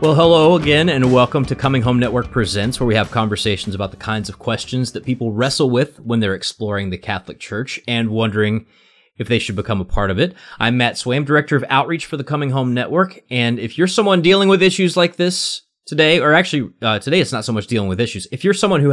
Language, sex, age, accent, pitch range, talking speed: English, male, 30-49, American, 100-135 Hz, 240 wpm